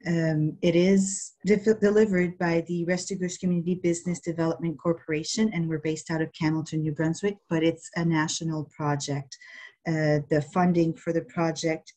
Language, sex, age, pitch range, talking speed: English, female, 30-49, 155-170 Hz, 150 wpm